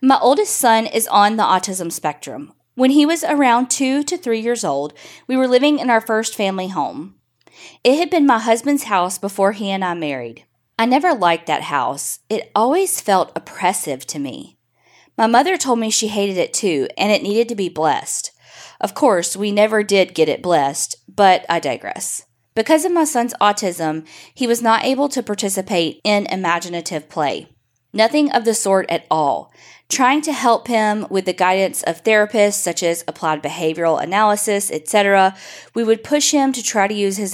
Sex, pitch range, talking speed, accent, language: female, 180-240 Hz, 185 wpm, American, English